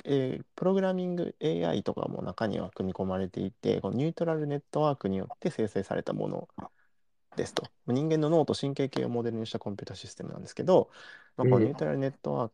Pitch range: 115-160 Hz